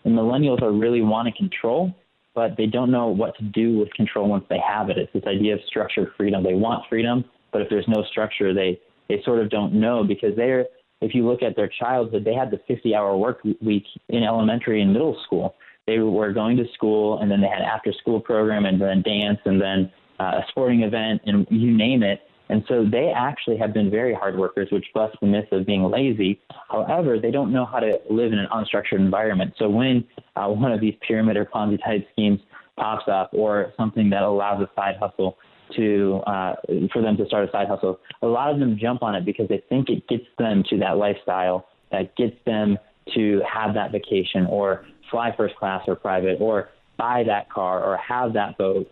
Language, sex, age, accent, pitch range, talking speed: English, male, 20-39, American, 100-115 Hz, 215 wpm